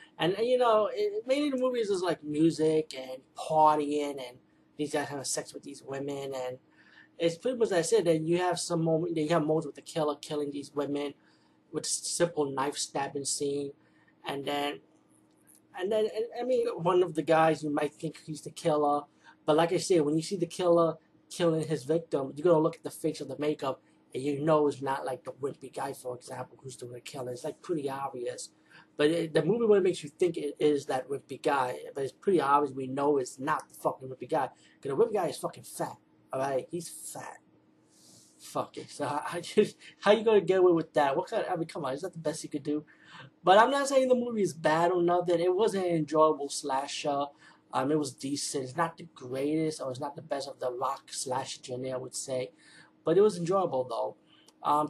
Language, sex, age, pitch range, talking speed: English, male, 30-49, 140-175 Hz, 220 wpm